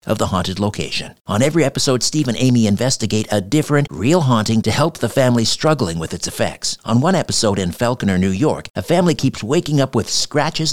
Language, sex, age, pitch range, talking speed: English, male, 50-69, 100-130 Hz, 205 wpm